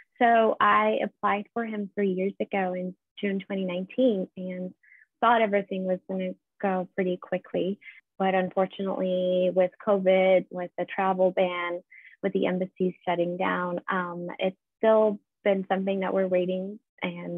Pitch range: 180-210 Hz